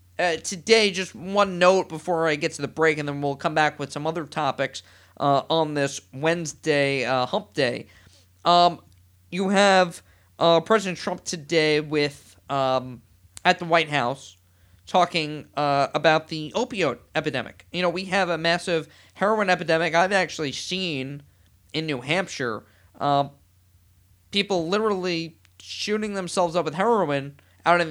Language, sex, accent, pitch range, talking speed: English, male, American, 125-180 Hz, 150 wpm